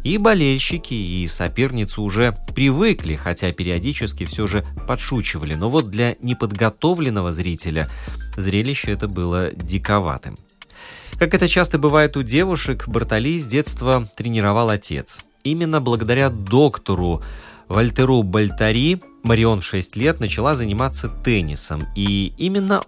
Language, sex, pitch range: Russian, male, 90-130 Hz